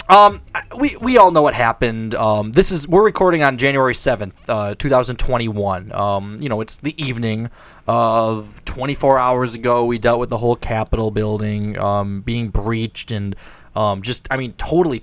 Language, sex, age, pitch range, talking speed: English, male, 20-39, 110-160 Hz, 170 wpm